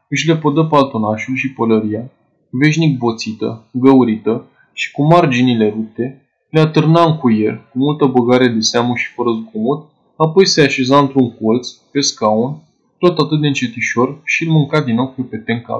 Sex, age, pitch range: male, 20-39, 120-155 Hz